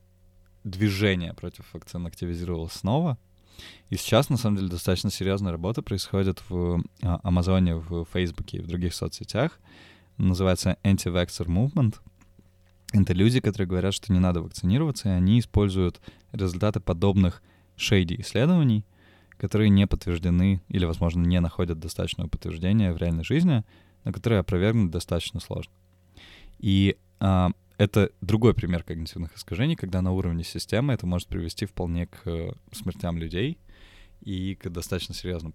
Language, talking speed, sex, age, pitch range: Russian, 130 wpm, male, 20-39, 90-105 Hz